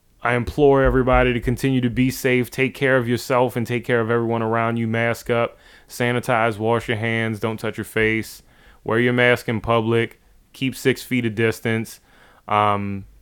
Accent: American